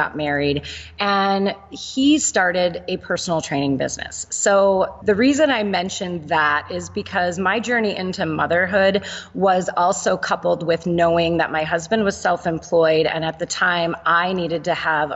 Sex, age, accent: female, 30-49, American